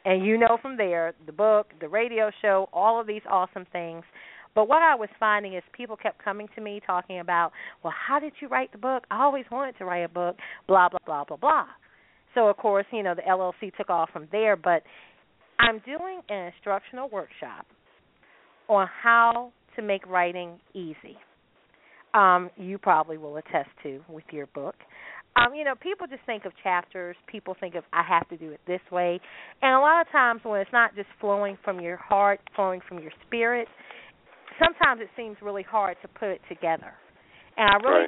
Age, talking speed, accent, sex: 40-59, 200 wpm, American, female